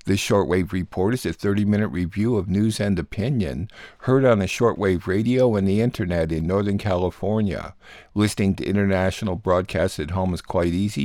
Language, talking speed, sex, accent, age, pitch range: English, 170 wpm, male, American, 50-69, 95-110 Hz